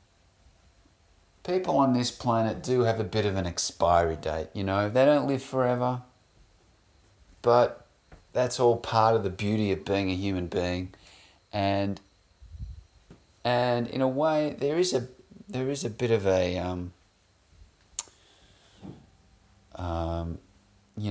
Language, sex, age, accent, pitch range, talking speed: English, male, 30-49, Australian, 90-115 Hz, 135 wpm